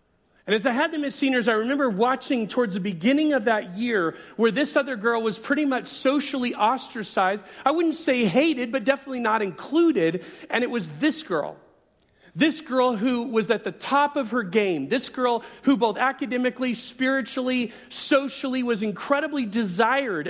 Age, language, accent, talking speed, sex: 40-59, English, American, 170 wpm, male